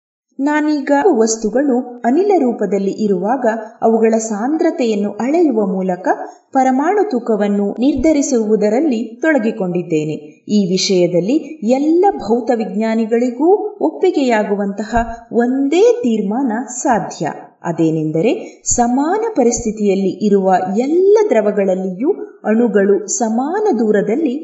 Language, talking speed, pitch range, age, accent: Kannada, 75 wpm, 200-310 Hz, 30-49, native